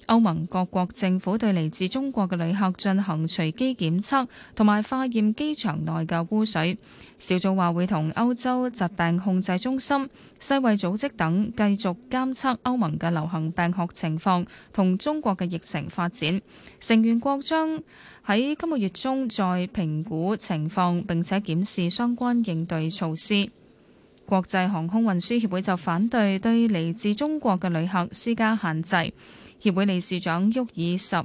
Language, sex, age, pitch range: Chinese, female, 20-39, 175-230 Hz